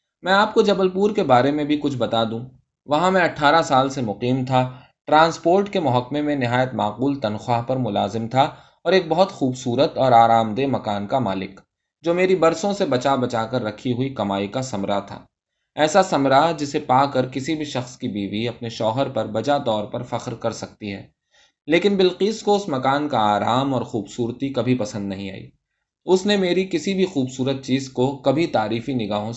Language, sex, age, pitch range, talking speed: Urdu, male, 20-39, 115-165 Hz, 195 wpm